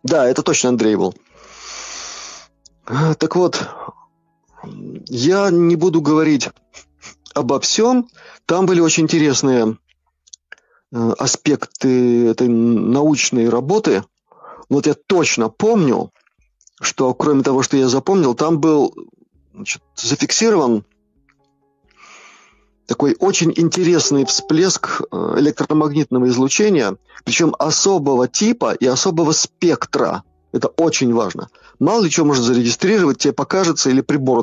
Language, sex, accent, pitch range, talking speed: Russian, male, native, 125-170 Hz, 100 wpm